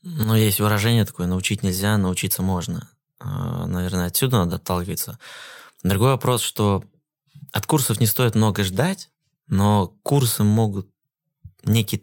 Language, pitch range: Russian, 95-125 Hz